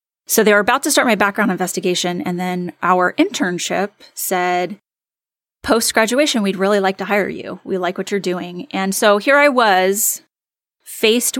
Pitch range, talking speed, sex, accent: 185-225 Hz, 175 wpm, female, American